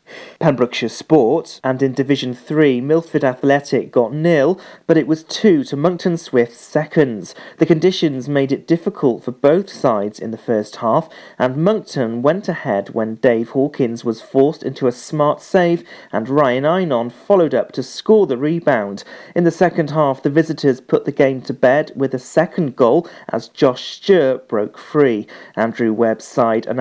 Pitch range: 125-165 Hz